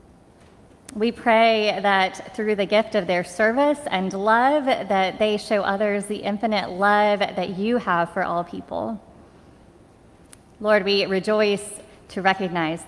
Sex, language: female, English